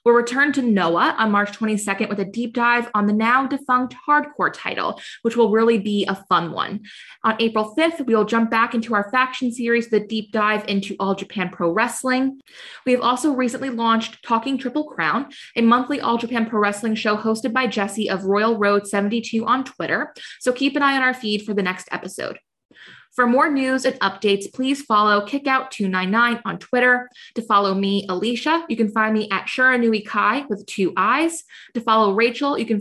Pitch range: 205-255 Hz